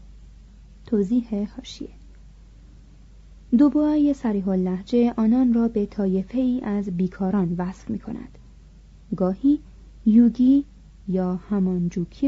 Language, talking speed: Persian, 90 wpm